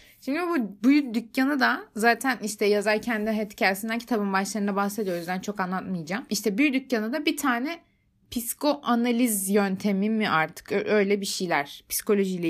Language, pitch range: Turkish, 180-250 Hz